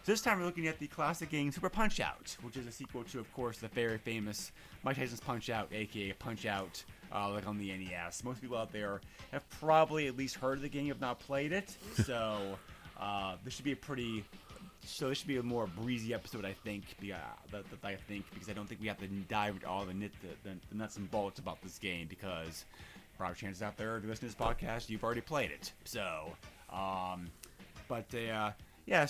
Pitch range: 100-140 Hz